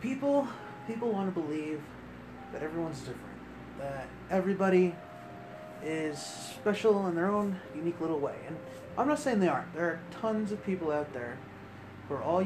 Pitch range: 130-175 Hz